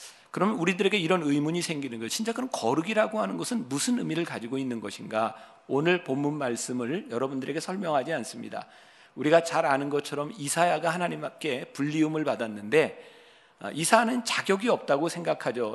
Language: Korean